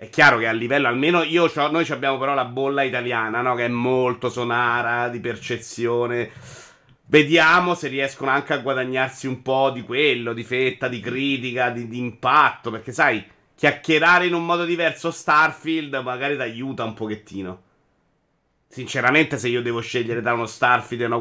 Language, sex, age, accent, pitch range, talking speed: Italian, male, 30-49, native, 115-145 Hz, 170 wpm